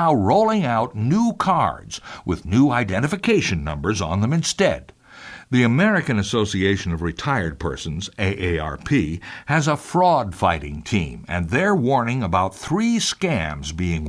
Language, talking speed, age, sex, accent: English, 125 wpm, 60-79, male, American